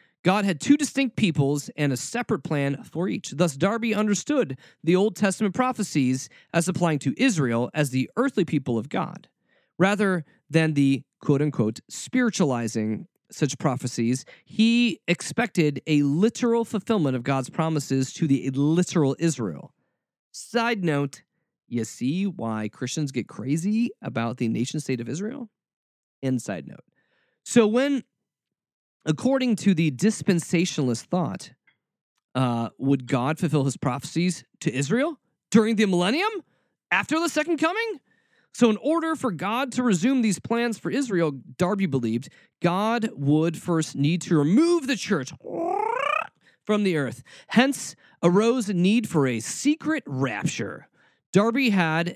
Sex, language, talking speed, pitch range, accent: male, English, 135 wpm, 140-230 Hz, American